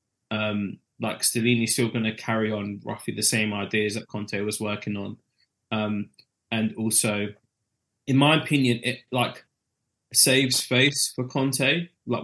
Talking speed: 145 wpm